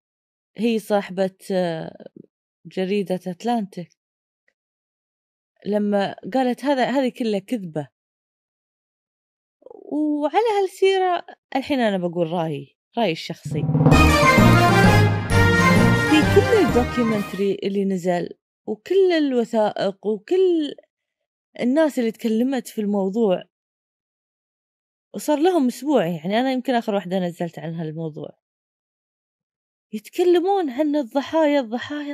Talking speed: 85 wpm